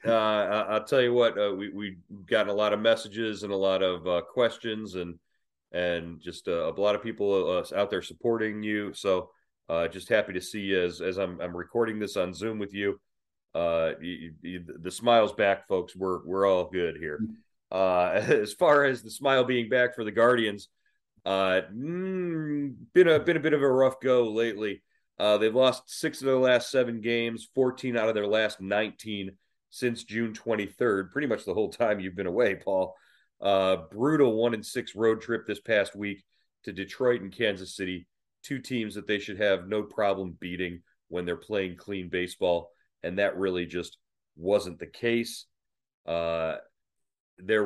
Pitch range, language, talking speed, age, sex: 95-115 Hz, English, 185 wpm, 30-49, male